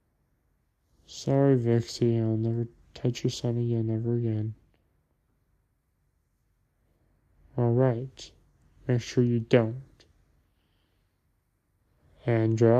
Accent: American